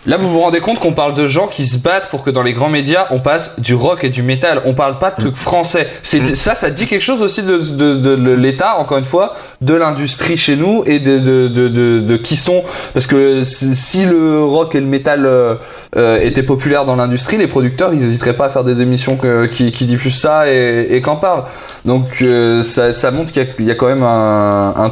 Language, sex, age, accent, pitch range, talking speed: French, male, 20-39, French, 115-145 Hz, 250 wpm